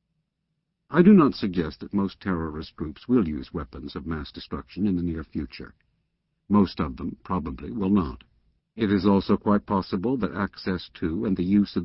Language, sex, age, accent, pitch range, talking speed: English, male, 60-79, American, 90-140 Hz, 180 wpm